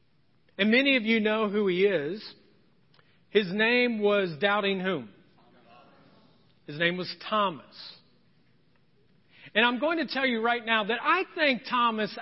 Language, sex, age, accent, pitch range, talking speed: English, male, 40-59, American, 205-275 Hz, 140 wpm